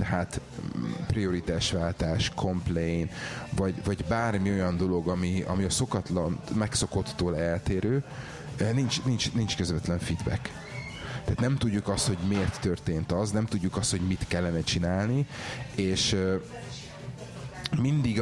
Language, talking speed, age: Hungarian, 120 wpm, 30-49